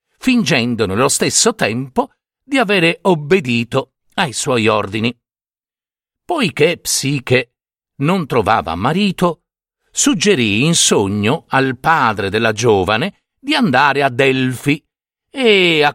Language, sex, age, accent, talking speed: Italian, male, 50-69, native, 105 wpm